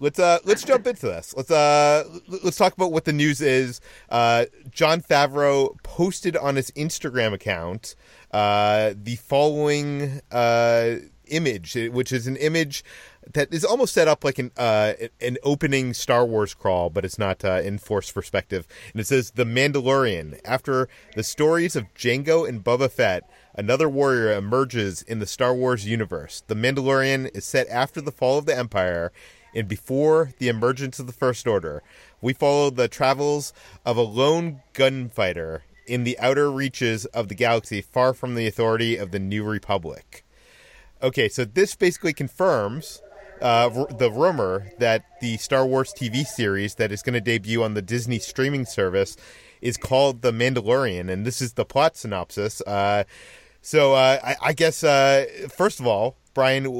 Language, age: English, 30-49